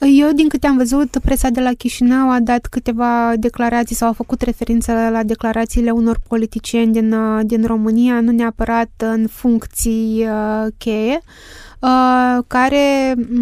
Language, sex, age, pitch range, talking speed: Romanian, female, 20-39, 225-245 Hz, 135 wpm